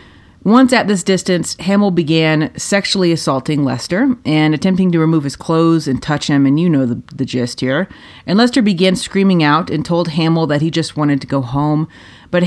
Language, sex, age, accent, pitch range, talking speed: English, female, 30-49, American, 150-190 Hz, 195 wpm